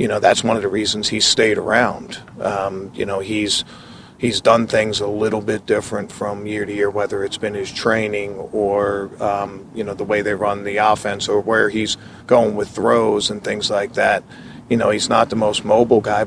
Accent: American